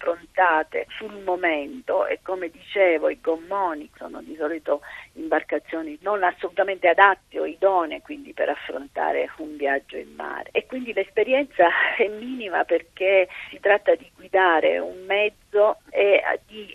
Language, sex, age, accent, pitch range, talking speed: Italian, female, 40-59, native, 160-215 Hz, 135 wpm